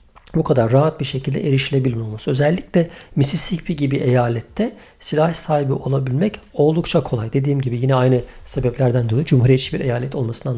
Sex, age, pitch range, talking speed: male, 50-69, 125-165 Hz, 140 wpm